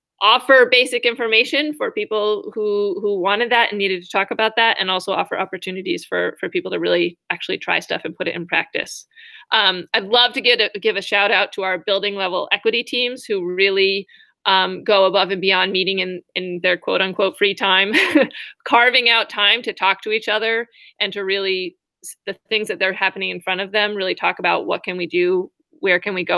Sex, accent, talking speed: female, American, 215 wpm